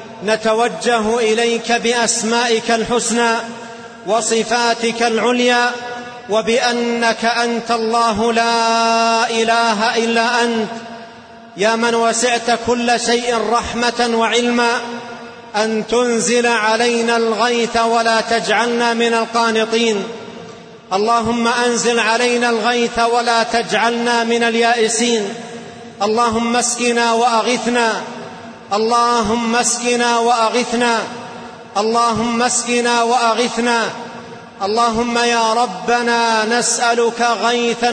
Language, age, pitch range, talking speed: Arabic, 40-59, 230-240 Hz, 80 wpm